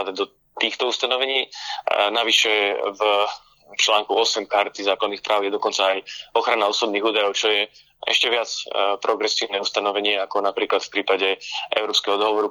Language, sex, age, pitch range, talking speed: Slovak, male, 20-39, 100-115 Hz, 135 wpm